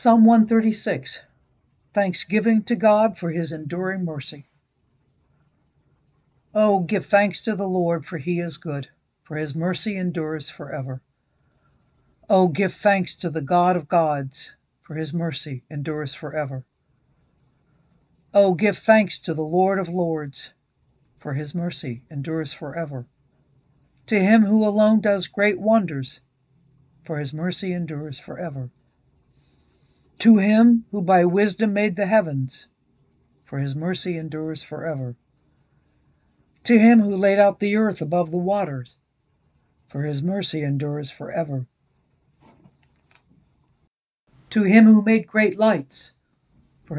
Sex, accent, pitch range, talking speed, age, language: female, American, 150-200 Hz, 125 wpm, 60-79, English